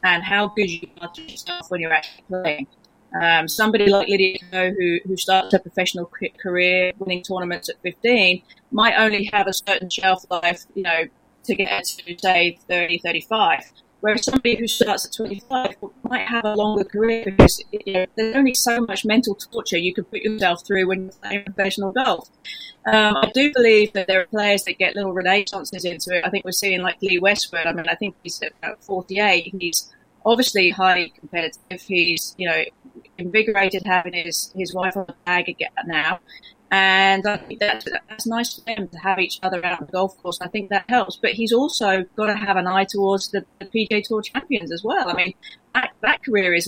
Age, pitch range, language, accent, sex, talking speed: 30-49, 180-215 Hz, English, British, female, 200 wpm